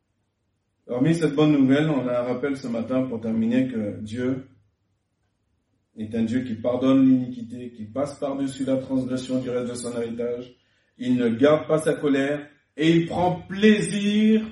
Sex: male